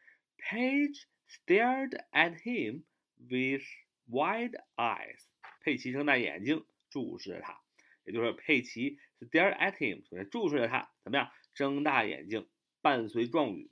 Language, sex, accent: Chinese, male, native